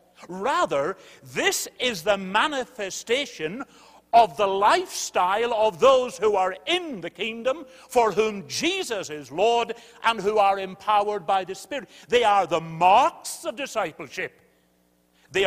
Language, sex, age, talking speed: English, male, 60-79, 130 wpm